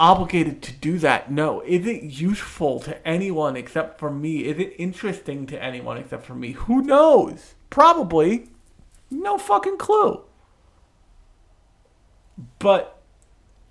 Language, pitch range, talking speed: English, 135-170 Hz, 125 wpm